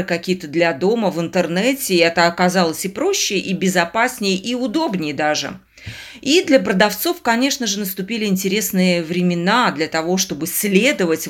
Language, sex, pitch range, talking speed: Russian, female, 175-230 Hz, 145 wpm